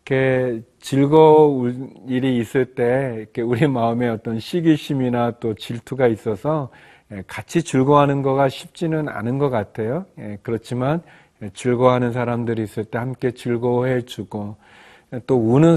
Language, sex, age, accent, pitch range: Korean, male, 40-59, native, 110-140 Hz